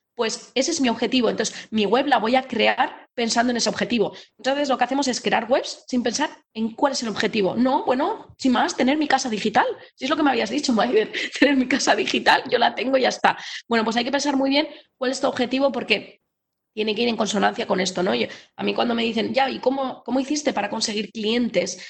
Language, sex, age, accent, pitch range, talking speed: Spanish, female, 20-39, Spanish, 210-265 Hz, 245 wpm